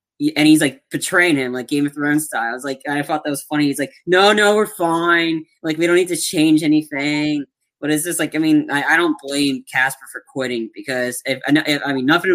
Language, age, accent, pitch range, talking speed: English, 10-29, American, 125-150 Hz, 245 wpm